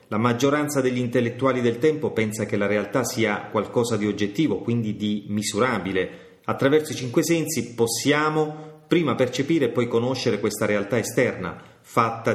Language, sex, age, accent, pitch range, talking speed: Italian, male, 30-49, native, 105-145 Hz, 150 wpm